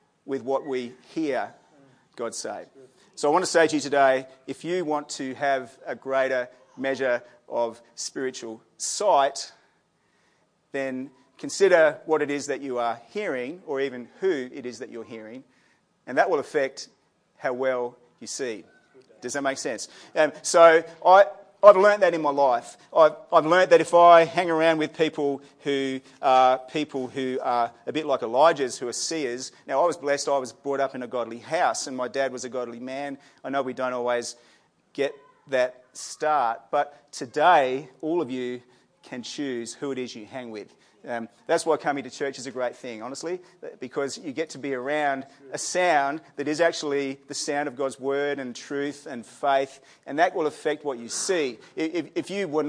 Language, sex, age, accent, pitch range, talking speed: English, male, 40-59, Australian, 130-150 Hz, 190 wpm